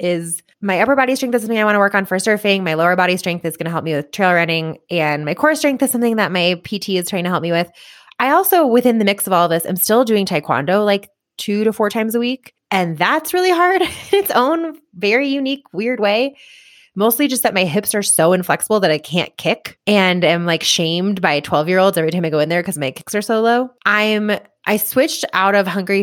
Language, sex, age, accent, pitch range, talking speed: English, female, 20-39, American, 175-225 Hz, 250 wpm